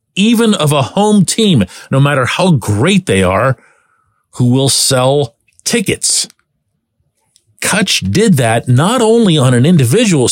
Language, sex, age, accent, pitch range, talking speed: English, male, 40-59, American, 115-180 Hz, 135 wpm